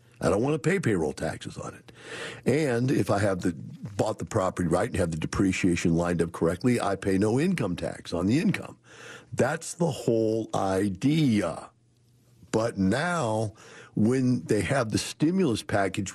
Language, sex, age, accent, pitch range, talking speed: English, male, 60-79, American, 95-120 Hz, 165 wpm